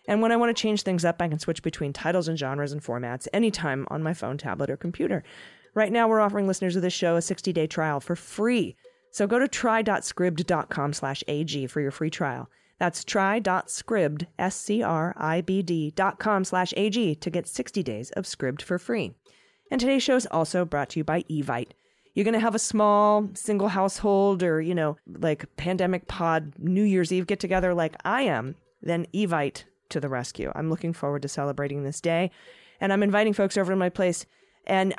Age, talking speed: 30-49, 195 wpm